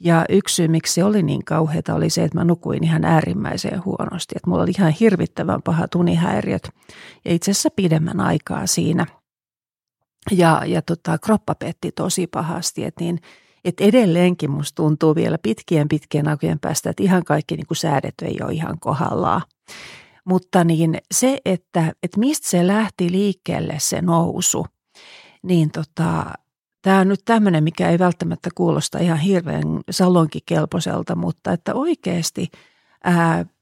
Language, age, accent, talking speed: Finnish, 40-59, native, 150 wpm